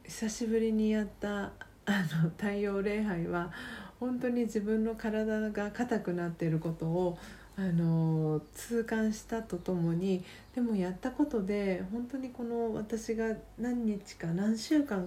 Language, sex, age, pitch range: Japanese, female, 40-59, 180-220 Hz